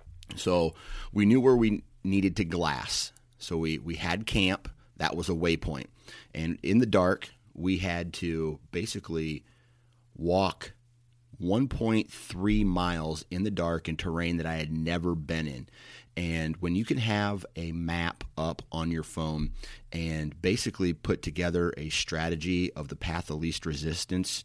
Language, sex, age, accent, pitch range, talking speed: English, male, 30-49, American, 80-95 Hz, 150 wpm